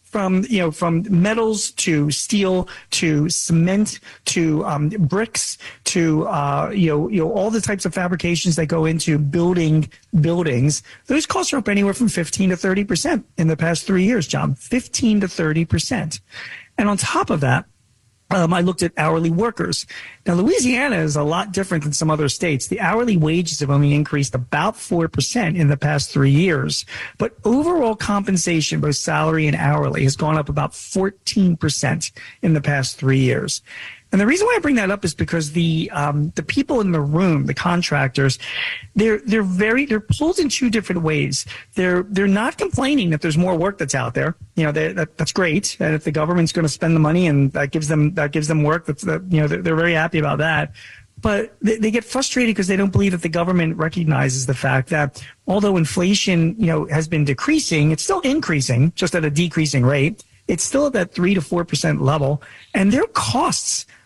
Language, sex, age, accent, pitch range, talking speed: English, male, 40-59, American, 150-195 Hz, 200 wpm